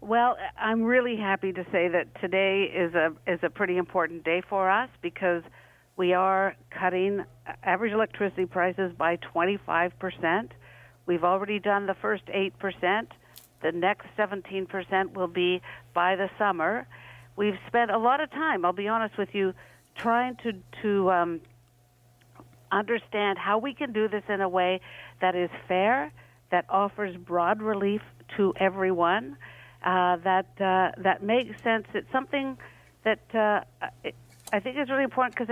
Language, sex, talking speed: English, female, 155 wpm